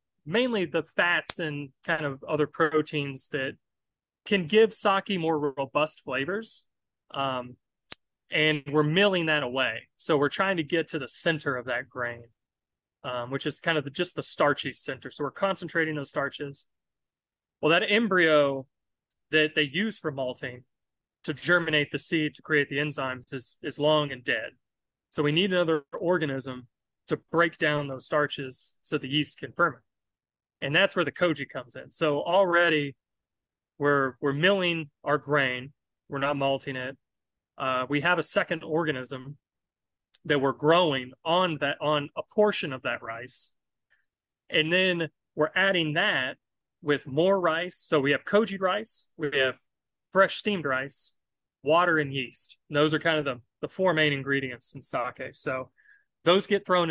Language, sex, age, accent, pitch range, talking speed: English, male, 30-49, American, 135-170 Hz, 160 wpm